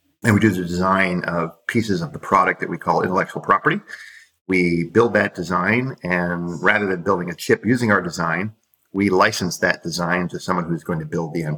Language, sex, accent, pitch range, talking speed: English, male, American, 85-105 Hz, 205 wpm